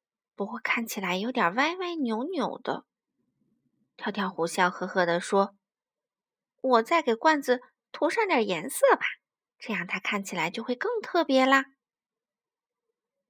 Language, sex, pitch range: Chinese, female, 210-320 Hz